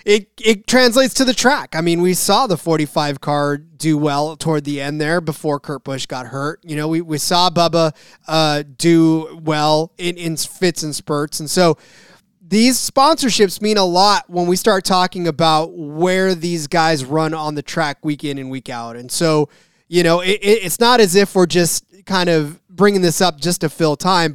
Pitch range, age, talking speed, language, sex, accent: 160-205 Hz, 20-39, 205 wpm, English, male, American